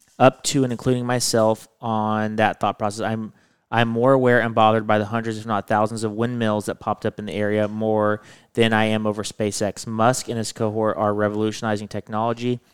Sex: male